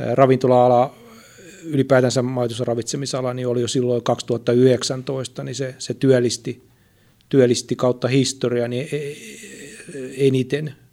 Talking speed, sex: 95 wpm, male